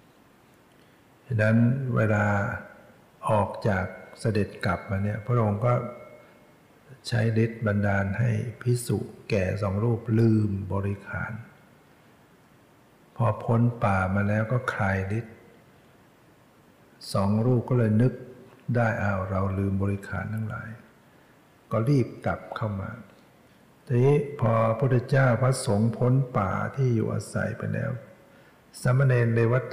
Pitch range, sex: 100-120 Hz, male